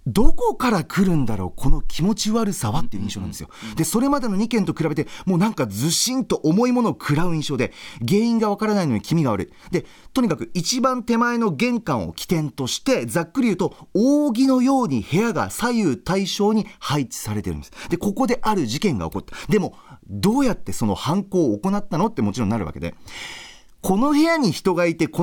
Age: 40-59